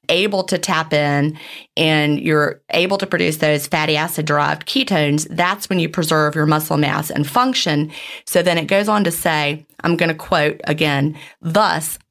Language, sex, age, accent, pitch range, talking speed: English, female, 30-49, American, 155-185 Hz, 180 wpm